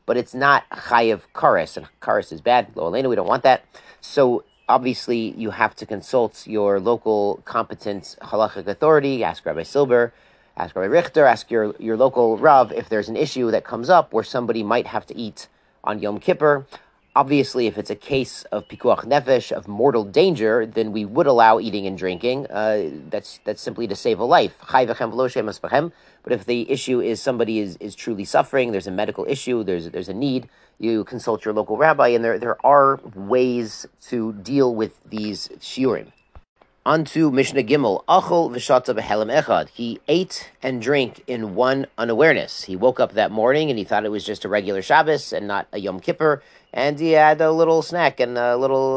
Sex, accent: male, American